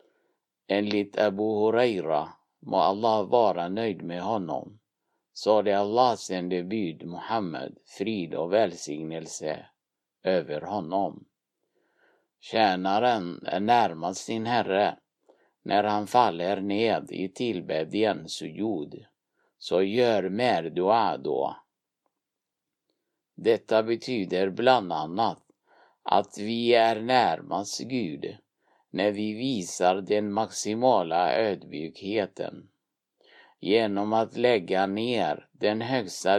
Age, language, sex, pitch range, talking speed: 50-69, Swedish, male, 100-125 Hz, 95 wpm